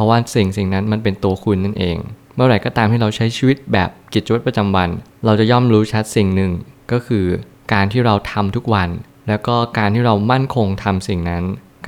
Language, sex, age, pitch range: Thai, male, 20-39, 100-115 Hz